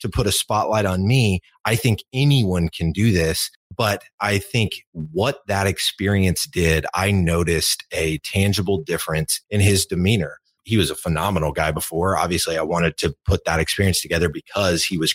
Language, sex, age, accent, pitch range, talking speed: English, male, 30-49, American, 85-105 Hz, 175 wpm